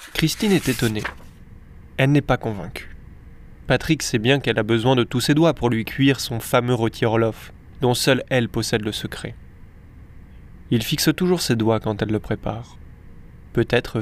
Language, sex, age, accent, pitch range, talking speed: French, male, 20-39, French, 110-135 Hz, 170 wpm